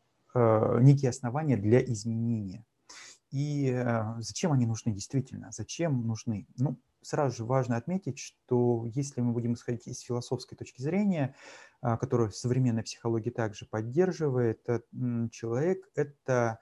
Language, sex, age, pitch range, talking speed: Russian, male, 30-49, 115-135 Hz, 115 wpm